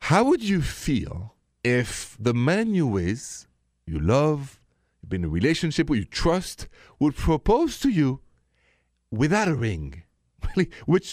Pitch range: 120-190 Hz